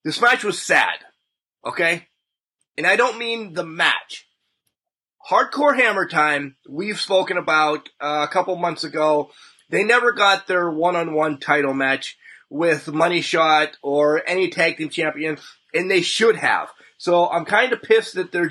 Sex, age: male, 30-49